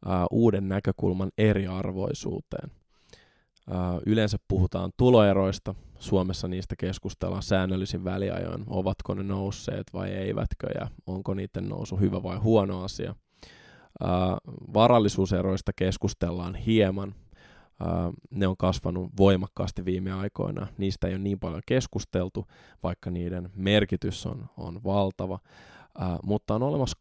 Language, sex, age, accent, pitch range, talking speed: Finnish, male, 20-39, native, 95-110 Hz, 105 wpm